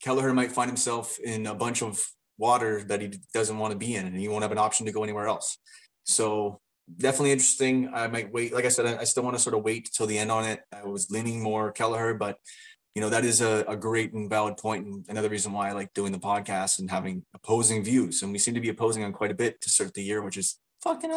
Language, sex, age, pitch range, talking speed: English, male, 20-39, 105-130 Hz, 265 wpm